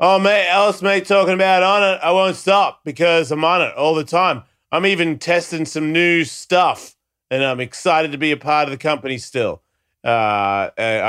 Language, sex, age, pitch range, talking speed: English, male, 30-49, 120-155 Hz, 195 wpm